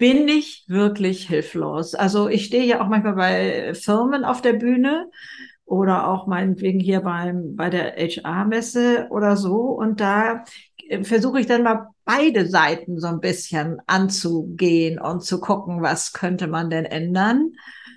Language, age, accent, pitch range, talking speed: German, 60-79, German, 180-230 Hz, 150 wpm